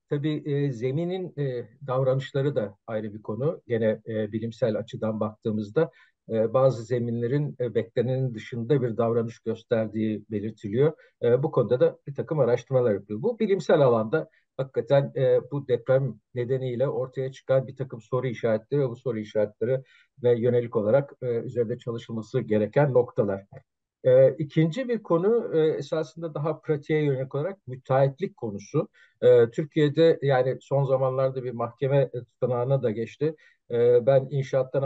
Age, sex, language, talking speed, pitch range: 50-69, male, Turkish, 145 wpm, 115-145 Hz